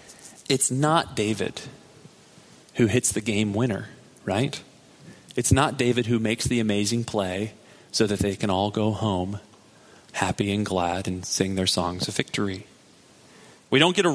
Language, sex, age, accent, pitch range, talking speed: English, male, 30-49, American, 105-140 Hz, 155 wpm